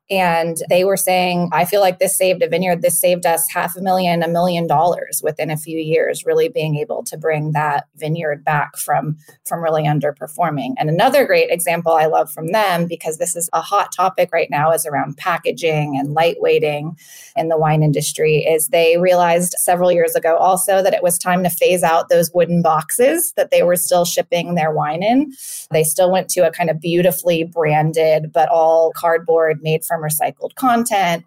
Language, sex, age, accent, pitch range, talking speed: English, female, 20-39, American, 165-210 Hz, 195 wpm